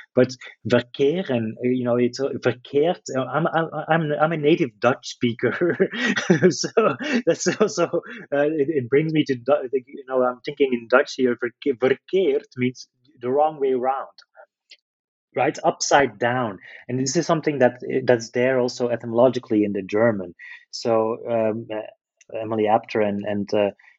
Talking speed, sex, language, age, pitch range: 150 wpm, male, English, 30-49, 105-130 Hz